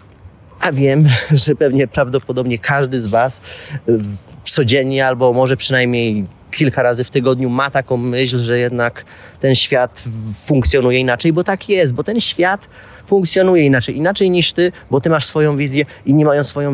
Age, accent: 30-49, native